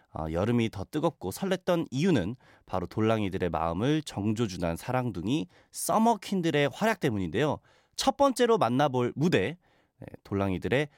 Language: Korean